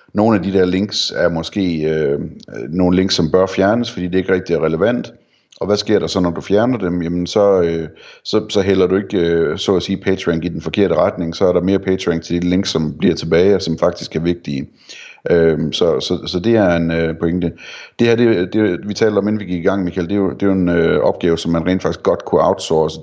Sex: male